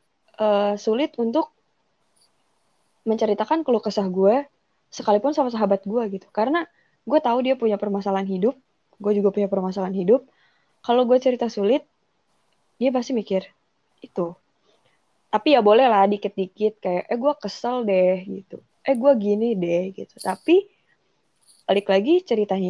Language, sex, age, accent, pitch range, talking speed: Indonesian, female, 20-39, native, 195-265 Hz, 135 wpm